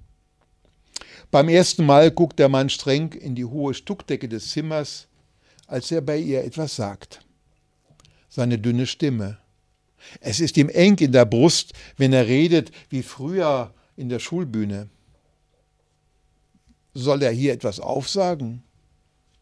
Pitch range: 110-155 Hz